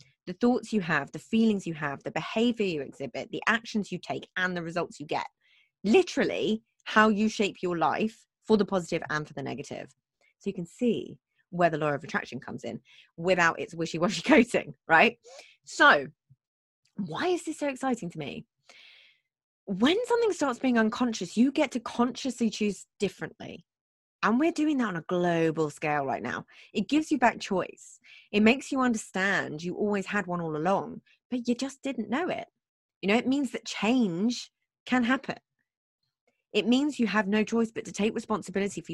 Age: 20-39